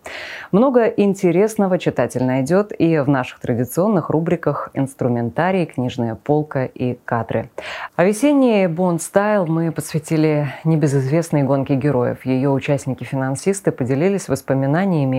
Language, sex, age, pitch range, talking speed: Russian, female, 20-39, 135-185 Hz, 105 wpm